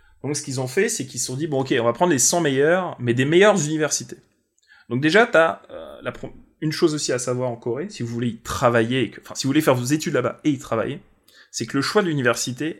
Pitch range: 115-155 Hz